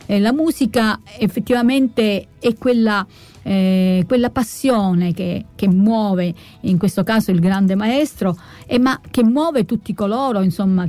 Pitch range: 180-220 Hz